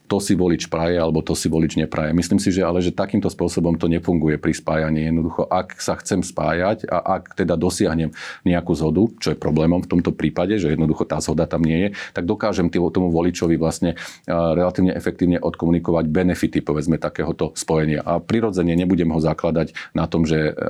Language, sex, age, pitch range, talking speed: Slovak, male, 40-59, 80-90 Hz, 185 wpm